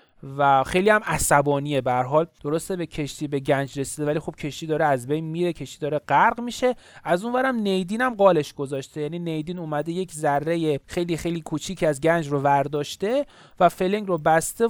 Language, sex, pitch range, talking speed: Persian, male, 140-190 Hz, 180 wpm